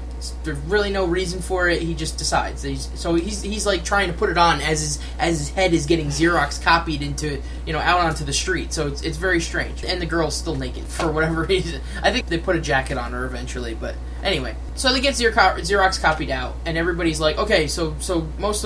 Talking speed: 230 wpm